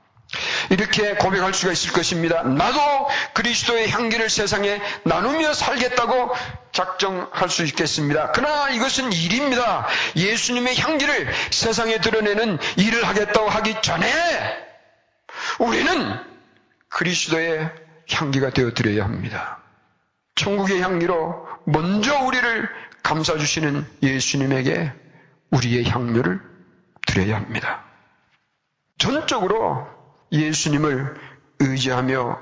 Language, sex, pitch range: Korean, male, 140-220 Hz